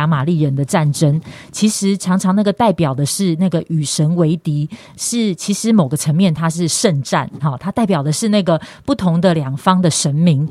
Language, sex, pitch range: Chinese, female, 155-195 Hz